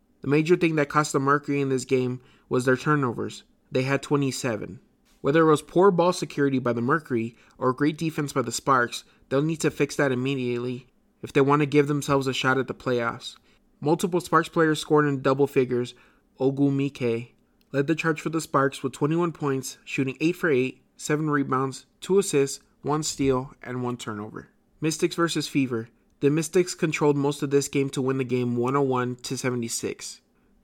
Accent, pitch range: American, 130-155 Hz